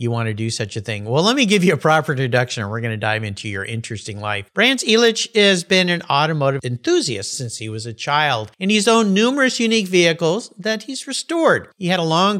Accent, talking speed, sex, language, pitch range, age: American, 235 wpm, male, English, 120-190 Hz, 50-69